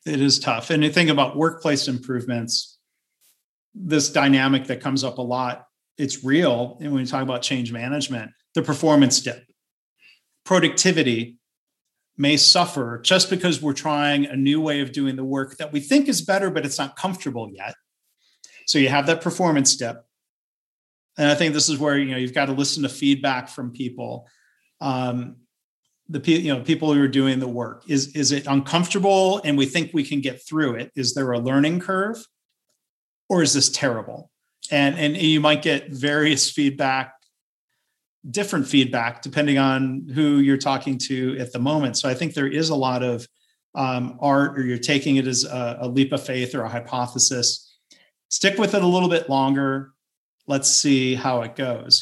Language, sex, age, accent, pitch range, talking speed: English, male, 40-59, American, 130-150 Hz, 185 wpm